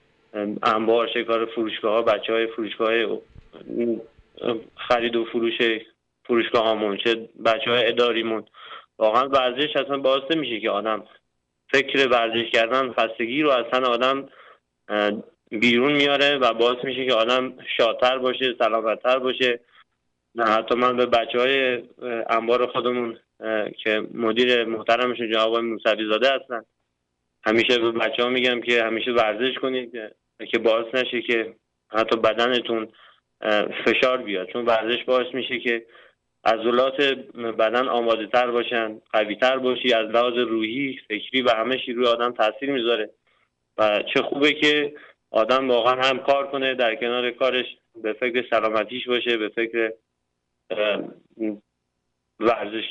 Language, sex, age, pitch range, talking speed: Persian, male, 20-39, 110-125 Hz, 125 wpm